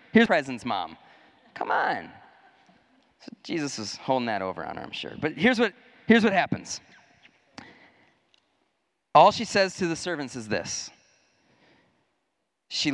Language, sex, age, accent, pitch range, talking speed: English, male, 30-49, American, 125-180 Hz, 130 wpm